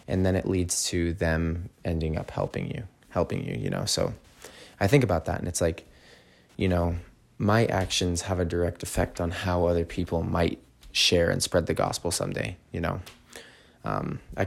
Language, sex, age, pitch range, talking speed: English, male, 20-39, 80-95 Hz, 185 wpm